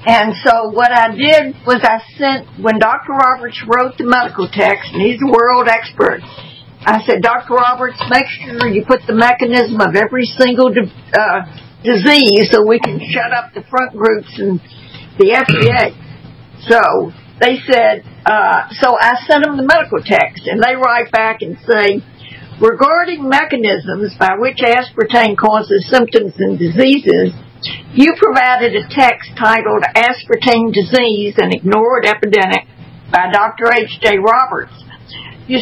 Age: 60-79